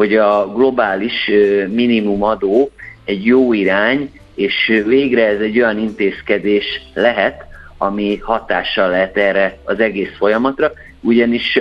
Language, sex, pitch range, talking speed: Hungarian, male, 100-120 Hz, 115 wpm